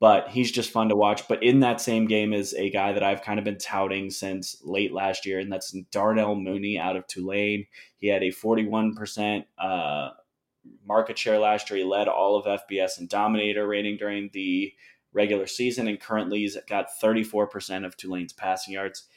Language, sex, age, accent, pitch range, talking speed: English, male, 20-39, American, 95-110 Hz, 190 wpm